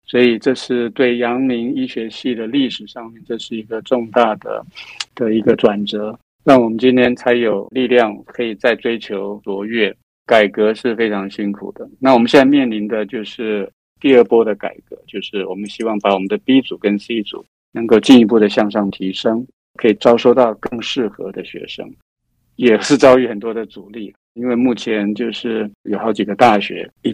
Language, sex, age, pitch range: Chinese, male, 50-69, 105-125 Hz